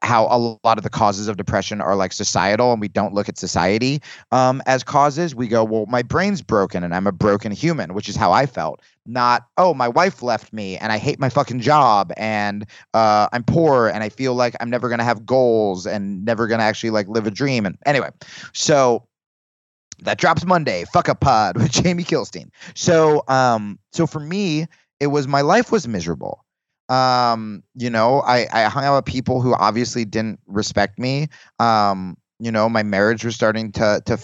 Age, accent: 30-49, American